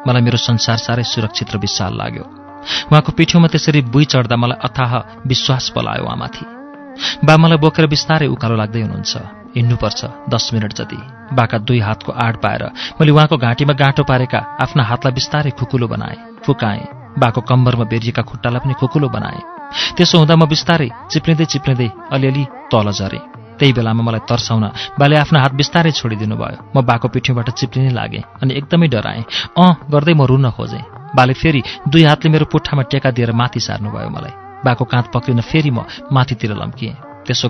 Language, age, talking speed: English, 40-59, 115 wpm